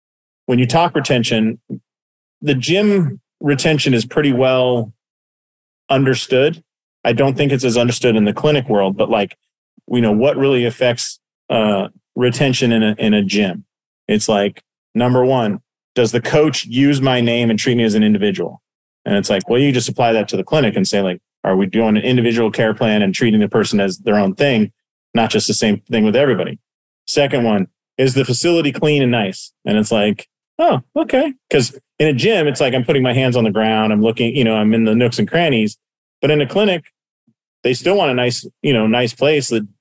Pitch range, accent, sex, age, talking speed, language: 110-135 Hz, American, male, 30-49, 205 wpm, English